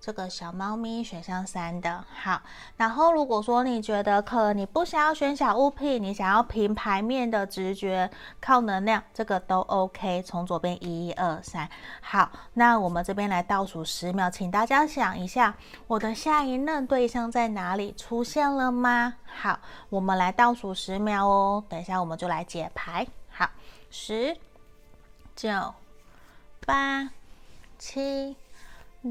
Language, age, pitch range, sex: Chinese, 20-39, 190-255 Hz, female